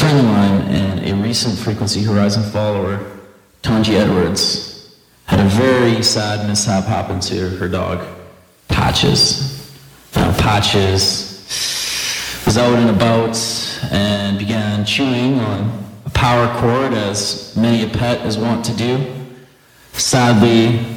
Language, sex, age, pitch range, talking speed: English, male, 30-49, 100-120 Hz, 125 wpm